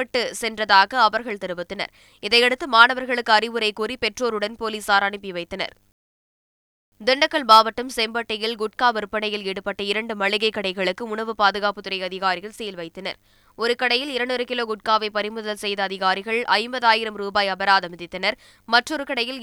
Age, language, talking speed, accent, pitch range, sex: 20-39, Tamil, 115 wpm, native, 200-240 Hz, female